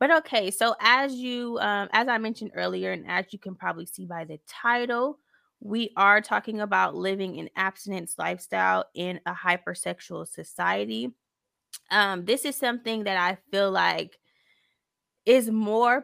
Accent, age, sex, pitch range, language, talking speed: American, 20-39, female, 180-220 Hz, English, 155 wpm